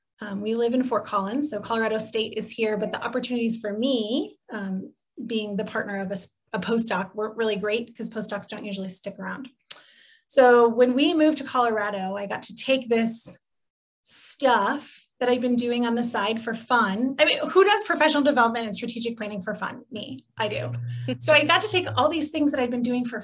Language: English